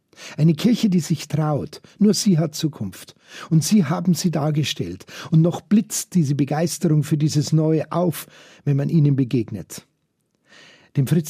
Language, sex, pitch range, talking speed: German, male, 150-195 Hz, 155 wpm